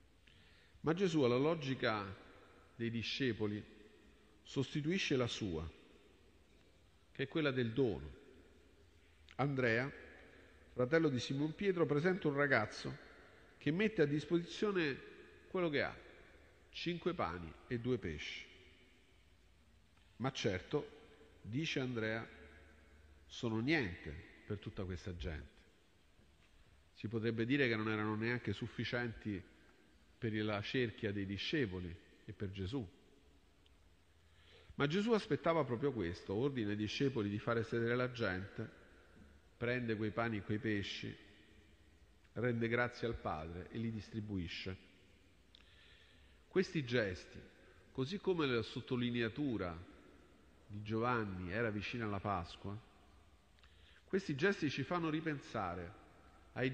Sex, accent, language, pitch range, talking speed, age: male, native, Italian, 90-130 Hz, 110 wpm, 50-69